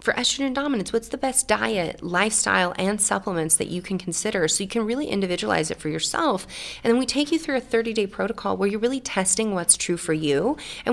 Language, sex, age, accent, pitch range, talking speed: English, female, 30-49, American, 165-225 Hz, 220 wpm